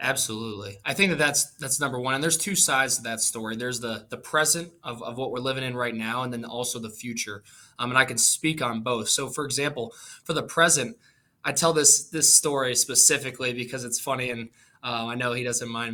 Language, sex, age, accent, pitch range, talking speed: English, male, 20-39, American, 120-140 Hz, 230 wpm